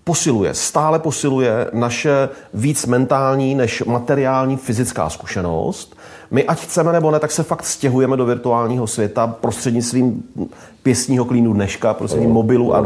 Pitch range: 110-140 Hz